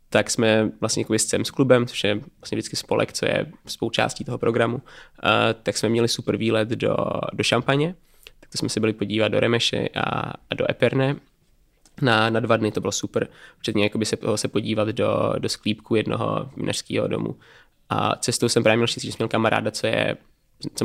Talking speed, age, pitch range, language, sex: 200 wpm, 20-39, 110-125 Hz, Czech, male